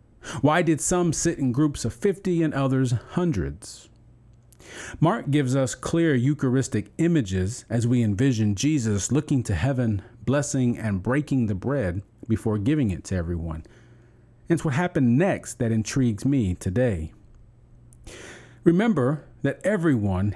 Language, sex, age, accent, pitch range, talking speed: English, male, 40-59, American, 110-140 Hz, 135 wpm